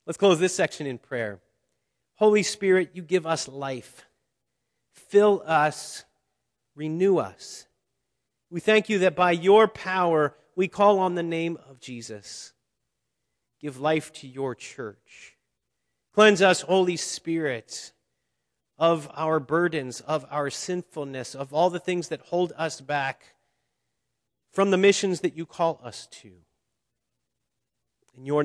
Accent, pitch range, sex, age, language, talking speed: American, 135-180 Hz, male, 40-59, English, 135 wpm